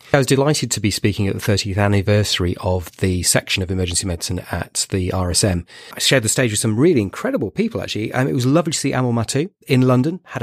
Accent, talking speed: British, 235 wpm